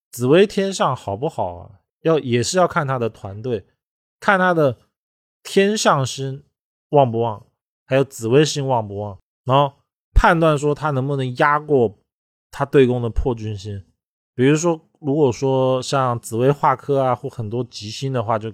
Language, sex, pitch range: Chinese, male, 110-140 Hz